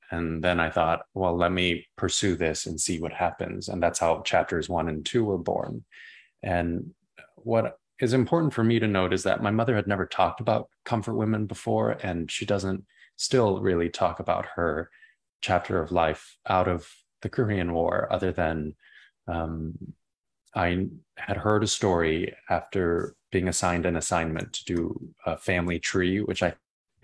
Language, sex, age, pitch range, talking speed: English, male, 20-39, 80-95 Hz, 175 wpm